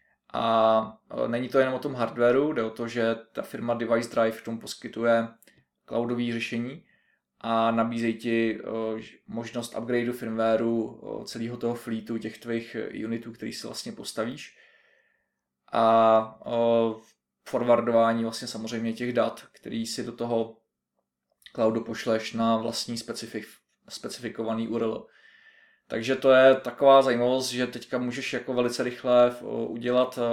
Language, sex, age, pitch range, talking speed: Czech, male, 20-39, 115-120 Hz, 125 wpm